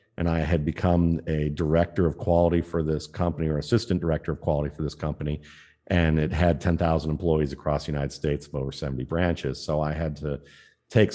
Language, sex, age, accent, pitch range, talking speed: English, male, 50-69, American, 80-95 Hz, 200 wpm